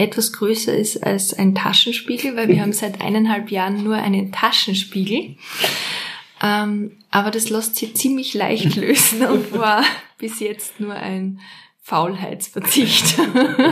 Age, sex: 20-39, female